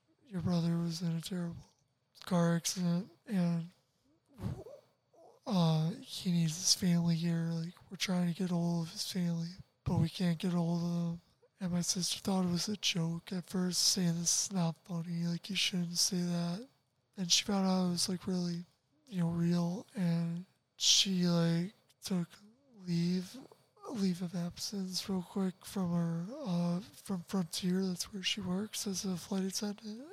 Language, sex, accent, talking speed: English, male, American, 170 wpm